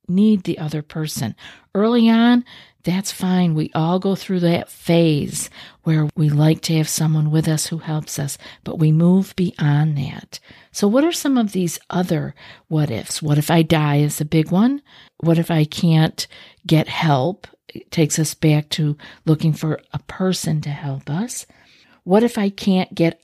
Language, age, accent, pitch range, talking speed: English, 50-69, American, 155-200 Hz, 180 wpm